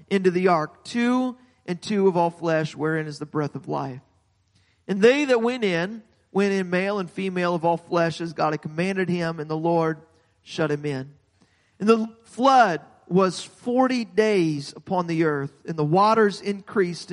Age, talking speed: 40-59, 180 wpm